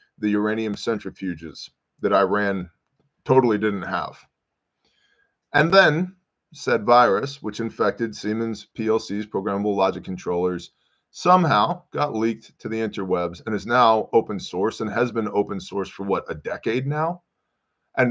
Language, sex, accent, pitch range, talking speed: English, male, American, 105-130 Hz, 135 wpm